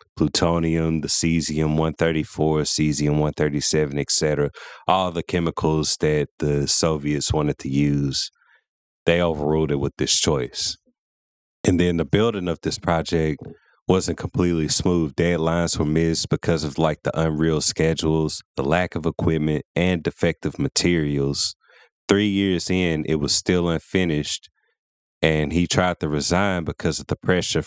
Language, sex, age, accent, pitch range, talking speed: English, male, 30-49, American, 75-85 Hz, 135 wpm